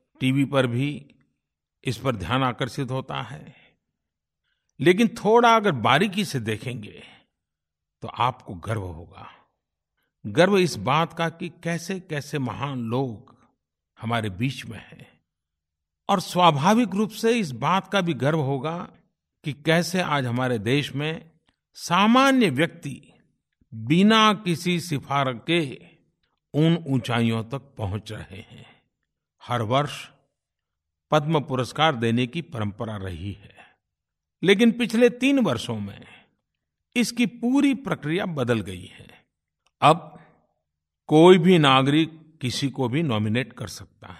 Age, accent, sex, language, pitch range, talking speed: 50-69, native, male, Hindi, 115-170 Hz, 120 wpm